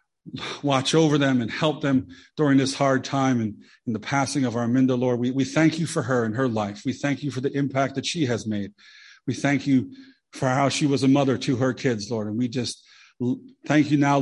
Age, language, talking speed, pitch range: 40-59, English, 235 wpm, 120-145 Hz